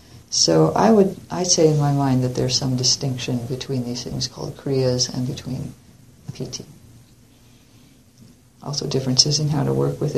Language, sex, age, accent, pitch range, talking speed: English, female, 50-69, American, 130-165 Hz, 160 wpm